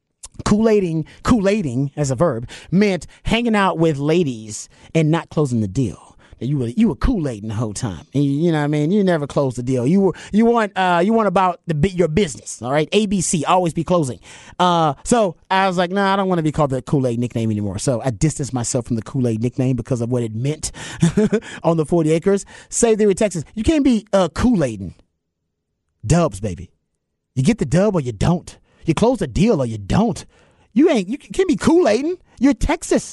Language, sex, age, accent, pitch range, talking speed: English, male, 30-49, American, 135-210 Hz, 225 wpm